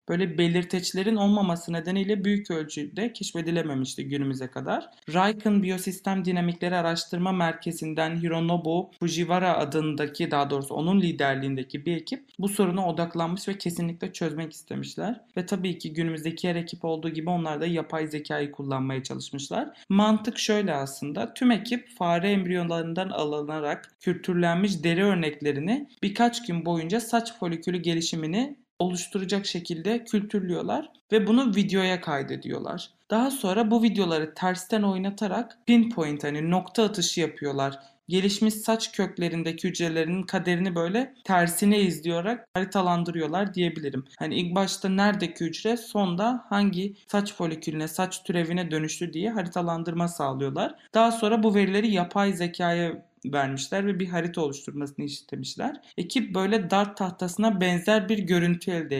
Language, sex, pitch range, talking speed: Turkish, male, 165-205 Hz, 125 wpm